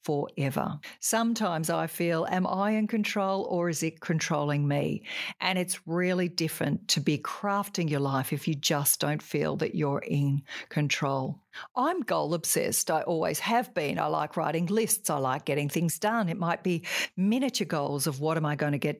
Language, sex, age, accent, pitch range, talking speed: English, female, 50-69, Australian, 155-205 Hz, 185 wpm